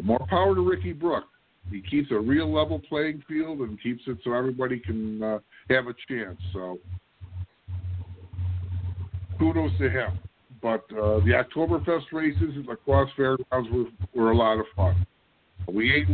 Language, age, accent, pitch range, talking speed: English, 50-69, American, 90-120 Hz, 160 wpm